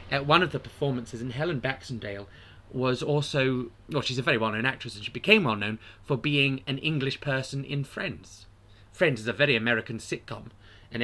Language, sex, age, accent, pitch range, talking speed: English, male, 20-39, British, 105-150 Hz, 185 wpm